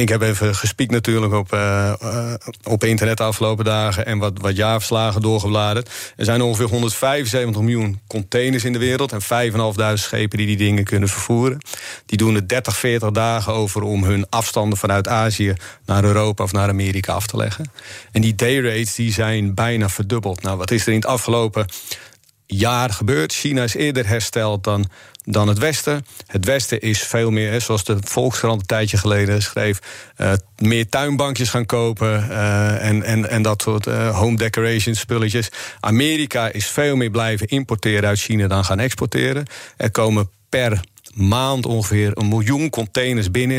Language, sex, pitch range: Dutch, male, 105-120 Hz